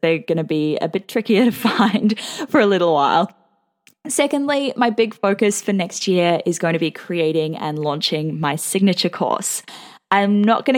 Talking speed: 185 wpm